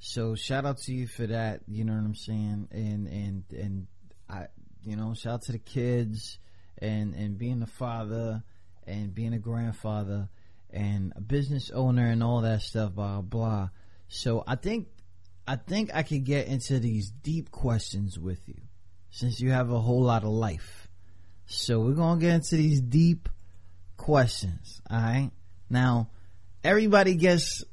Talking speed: 165 wpm